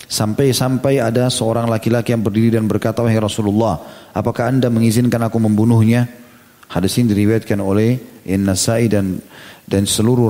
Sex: male